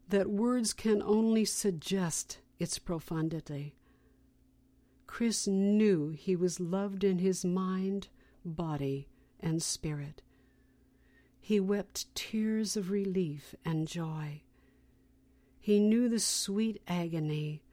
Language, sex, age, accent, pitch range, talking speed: English, female, 60-79, American, 140-200 Hz, 100 wpm